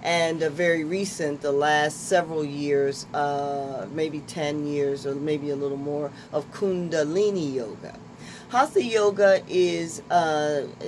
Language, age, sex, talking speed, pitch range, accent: English, 40-59, female, 130 wpm, 145-180 Hz, American